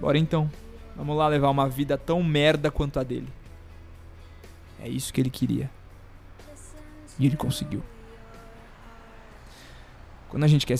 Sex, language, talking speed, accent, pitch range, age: male, Portuguese, 135 wpm, Brazilian, 110-145 Hz, 20-39